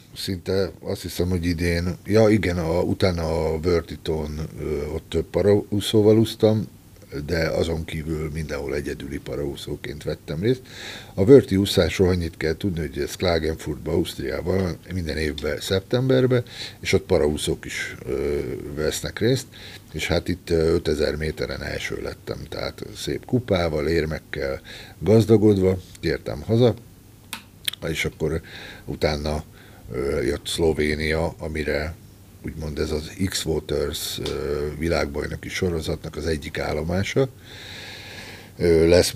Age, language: 60-79, Hungarian